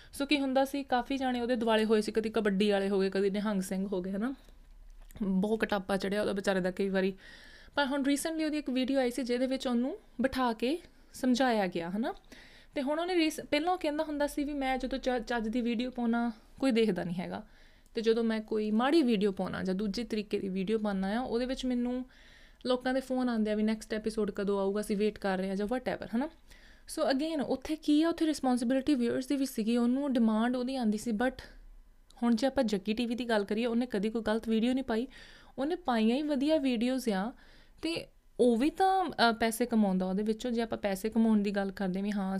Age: 20-39